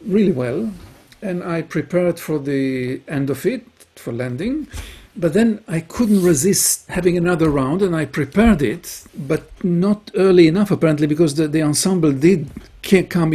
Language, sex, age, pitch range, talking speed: English, male, 50-69, 140-185 Hz, 155 wpm